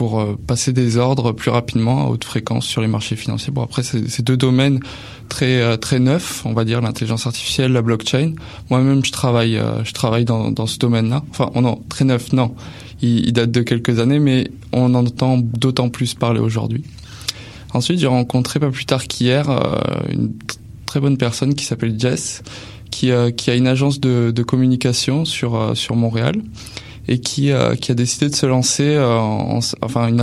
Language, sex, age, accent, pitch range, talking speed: French, male, 20-39, French, 115-130 Hz, 200 wpm